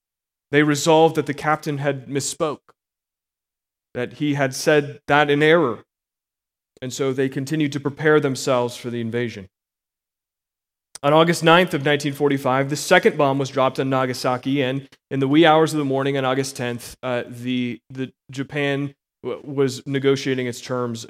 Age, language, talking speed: 30-49, English, 160 wpm